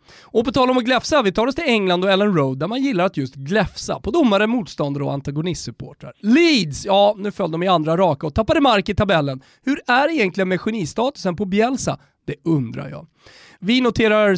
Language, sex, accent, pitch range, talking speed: Swedish, male, native, 155-245 Hz, 215 wpm